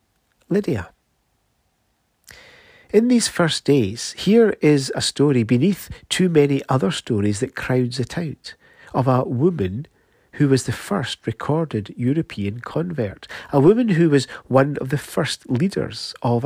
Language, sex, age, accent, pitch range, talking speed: English, male, 50-69, British, 115-160 Hz, 140 wpm